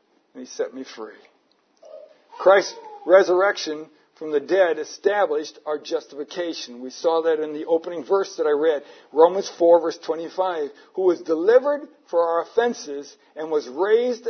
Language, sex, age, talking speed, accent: English, male, 60-79, 150 wpm, American